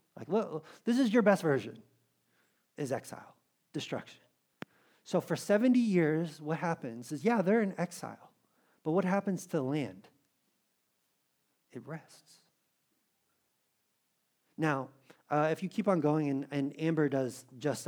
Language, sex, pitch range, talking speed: English, male, 135-175 Hz, 135 wpm